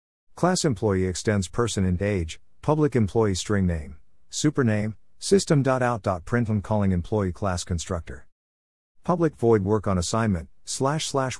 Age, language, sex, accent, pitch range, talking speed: 50-69, English, male, American, 85-120 Hz, 125 wpm